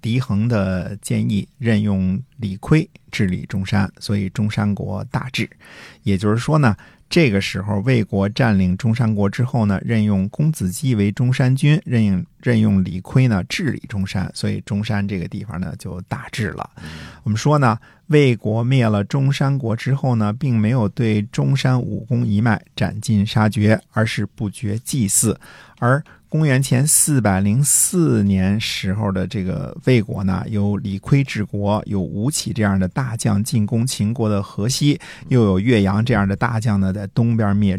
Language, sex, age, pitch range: Chinese, male, 50-69, 100-125 Hz